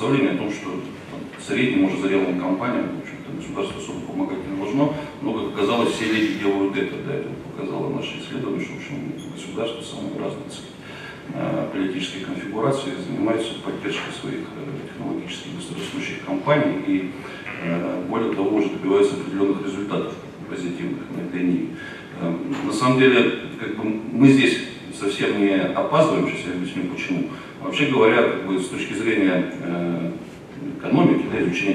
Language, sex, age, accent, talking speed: Russian, male, 40-59, native, 140 wpm